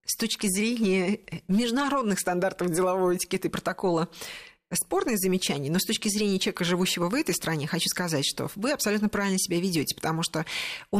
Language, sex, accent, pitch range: Russian, female, native, 185-245 Hz